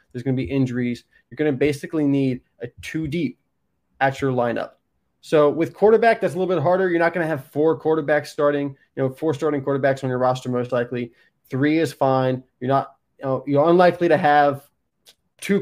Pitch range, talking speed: 125-145 Hz, 200 wpm